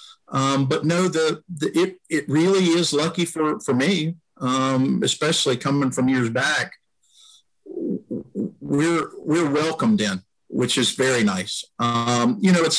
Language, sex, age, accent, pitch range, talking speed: English, male, 50-69, American, 115-160 Hz, 145 wpm